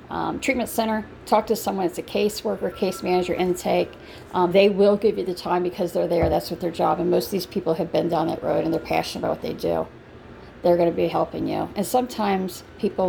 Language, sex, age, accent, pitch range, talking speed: English, female, 40-59, American, 160-200 Hz, 245 wpm